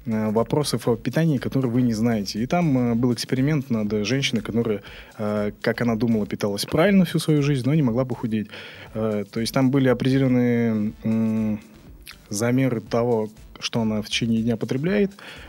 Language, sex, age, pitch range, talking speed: Russian, male, 20-39, 110-130 Hz, 150 wpm